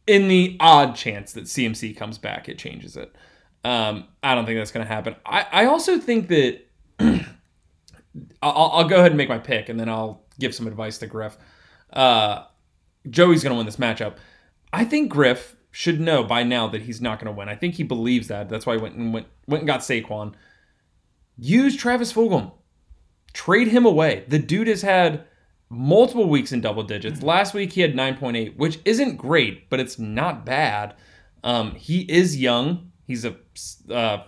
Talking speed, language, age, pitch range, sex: 190 wpm, English, 20-39, 110-160 Hz, male